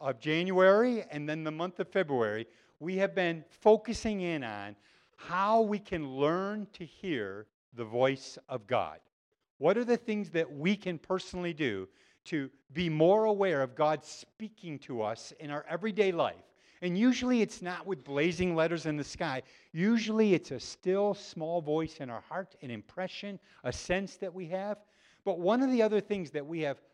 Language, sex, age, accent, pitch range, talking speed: English, male, 50-69, American, 140-195 Hz, 180 wpm